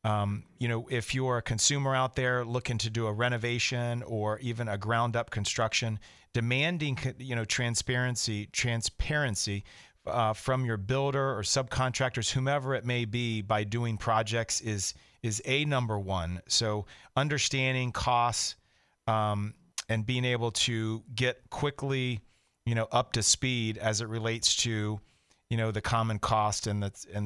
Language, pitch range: English, 105-120 Hz